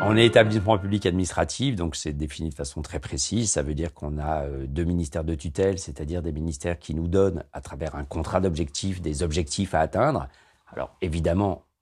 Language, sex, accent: French, male, French